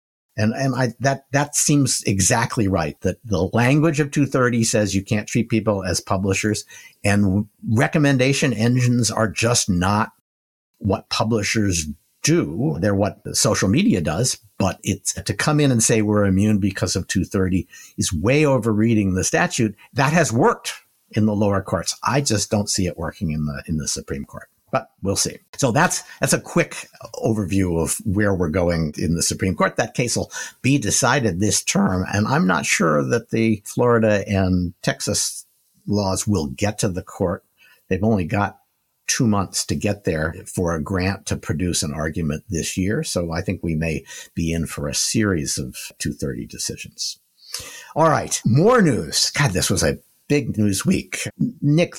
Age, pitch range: 50-69, 95-120 Hz